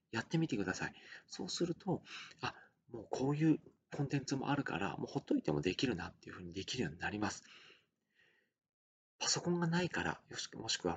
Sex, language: male, Japanese